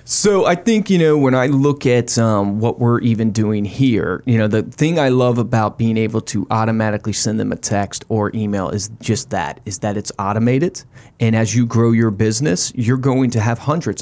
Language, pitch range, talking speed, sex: English, 110-130 Hz, 215 wpm, male